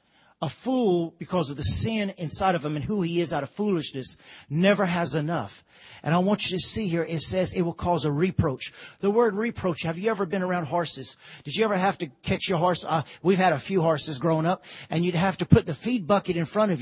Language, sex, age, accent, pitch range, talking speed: English, male, 40-59, American, 150-195 Hz, 245 wpm